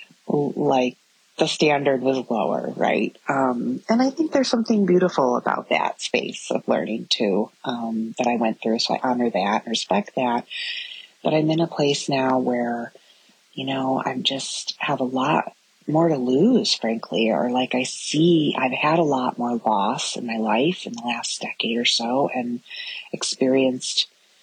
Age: 30-49